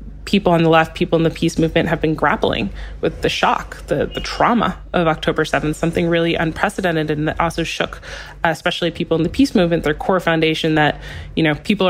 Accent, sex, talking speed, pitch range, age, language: American, female, 210 wpm, 155-170 Hz, 20-39, English